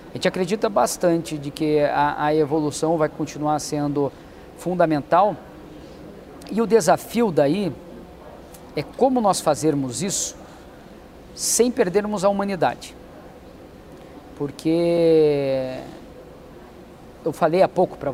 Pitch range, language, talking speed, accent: 155-185 Hz, Portuguese, 105 wpm, Brazilian